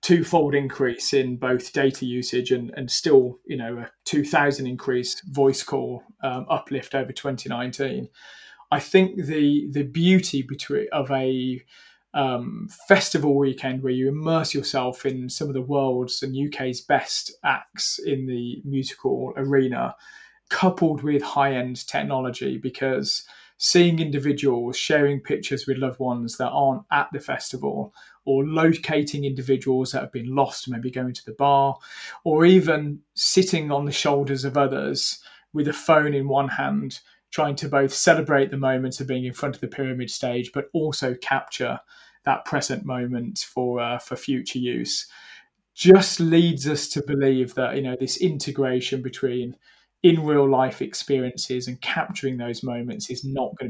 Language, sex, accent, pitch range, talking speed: English, male, British, 125-145 Hz, 155 wpm